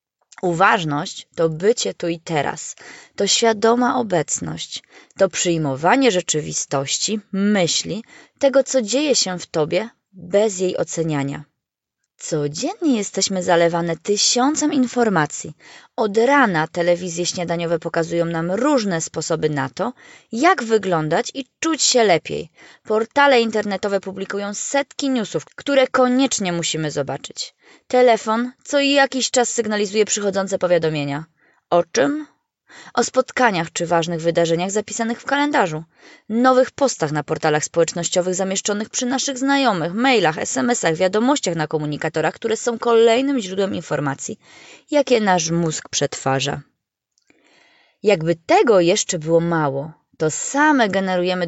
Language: Polish